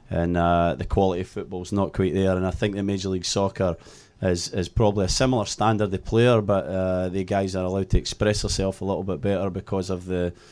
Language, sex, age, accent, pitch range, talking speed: English, male, 30-49, British, 90-105 Hz, 240 wpm